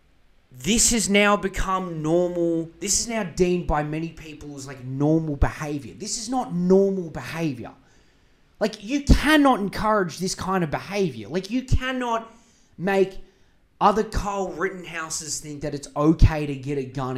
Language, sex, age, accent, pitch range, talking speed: English, male, 20-39, Australian, 145-200 Hz, 155 wpm